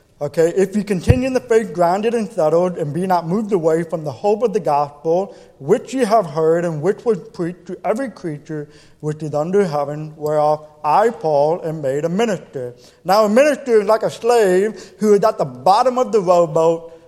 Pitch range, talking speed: 160-210 Hz, 205 wpm